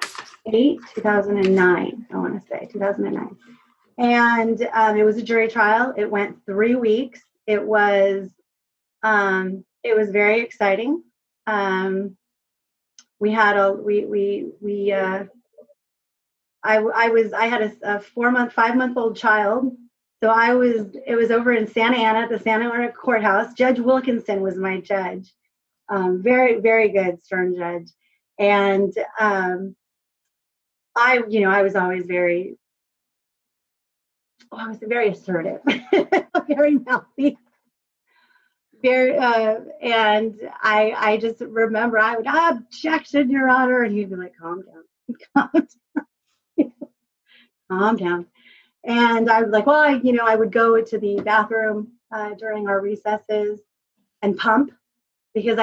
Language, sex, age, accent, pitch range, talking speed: English, female, 30-49, American, 205-240 Hz, 145 wpm